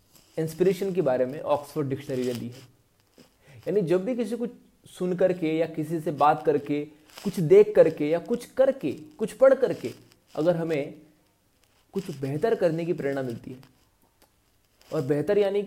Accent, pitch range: native, 125-170 Hz